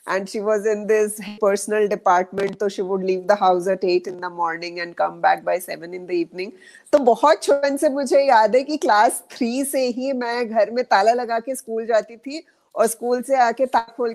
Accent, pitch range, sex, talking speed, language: native, 185-245 Hz, female, 210 wpm, Hindi